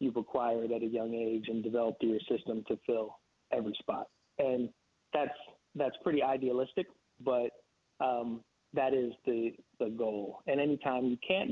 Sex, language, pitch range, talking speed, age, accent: male, English, 115-130 Hz, 155 wpm, 30-49, American